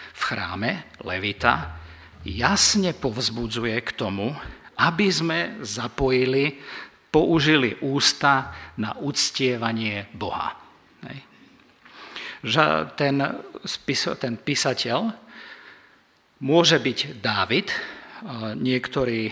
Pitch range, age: 110-135 Hz, 50-69